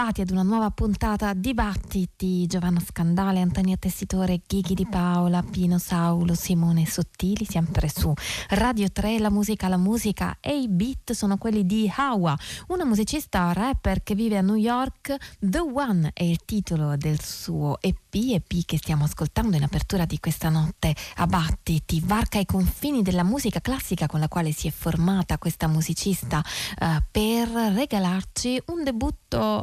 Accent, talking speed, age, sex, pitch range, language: native, 160 wpm, 20-39, female, 165-215 Hz, Italian